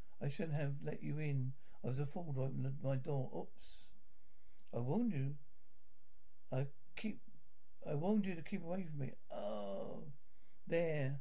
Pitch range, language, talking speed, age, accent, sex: 130-190 Hz, English, 160 wpm, 60-79, British, male